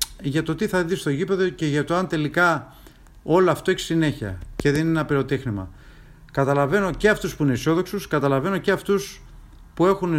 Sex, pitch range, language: male, 125-165 Hz, Greek